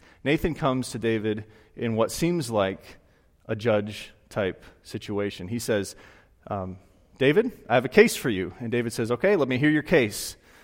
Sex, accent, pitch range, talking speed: male, American, 100-140 Hz, 170 wpm